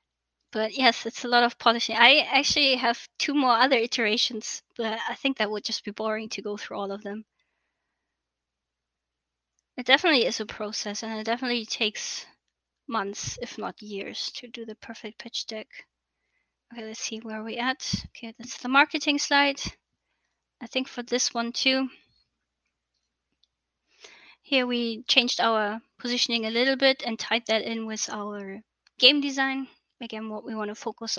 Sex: female